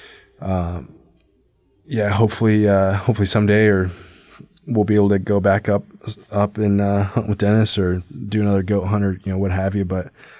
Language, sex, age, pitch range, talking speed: English, male, 20-39, 95-105 Hz, 185 wpm